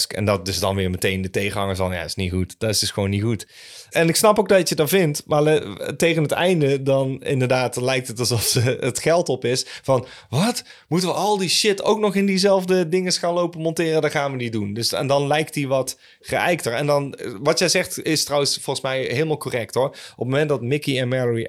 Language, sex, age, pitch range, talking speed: Dutch, male, 30-49, 110-145 Hz, 250 wpm